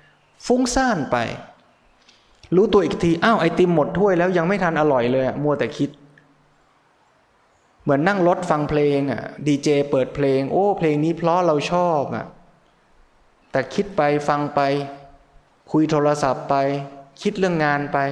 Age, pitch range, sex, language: 20-39, 135-165 Hz, male, Thai